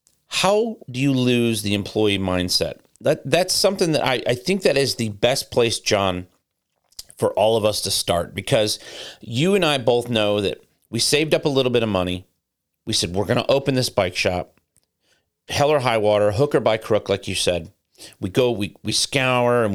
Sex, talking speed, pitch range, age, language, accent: male, 205 wpm, 100-125 Hz, 40-59, English, American